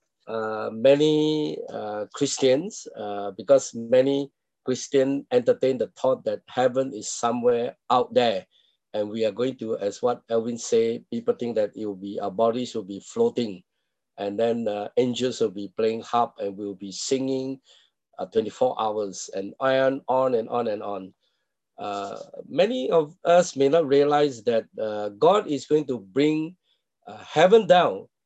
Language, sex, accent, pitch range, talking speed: English, male, Malaysian, 110-160 Hz, 160 wpm